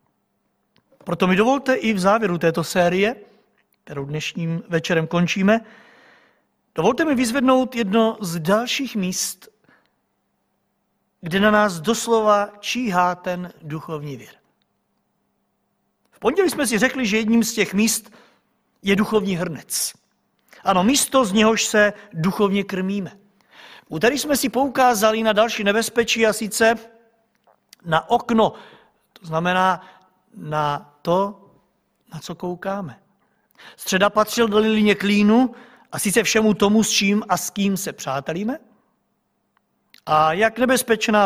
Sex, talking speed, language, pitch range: male, 125 wpm, Czech, 180-230 Hz